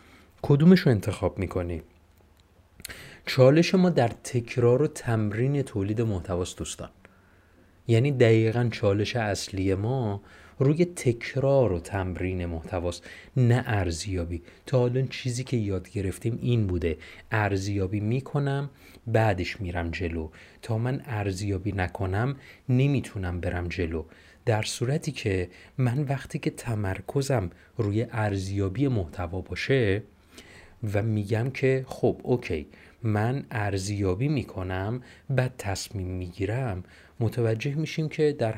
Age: 30-49